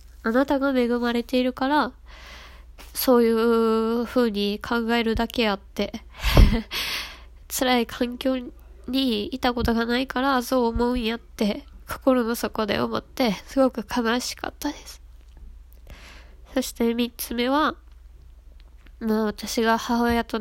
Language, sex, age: Japanese, female, 20-39